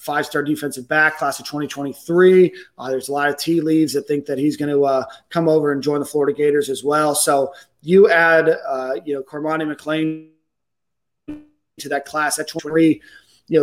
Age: 30-49